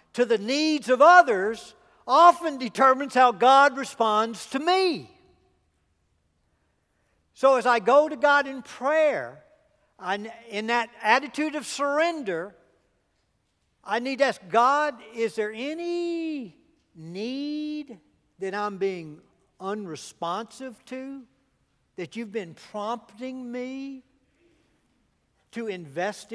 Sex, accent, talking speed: male, American, 105 wpm